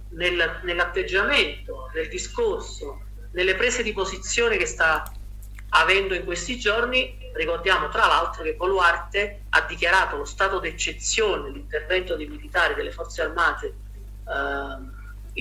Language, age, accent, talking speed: Italian, 40-59, native, 115 wpm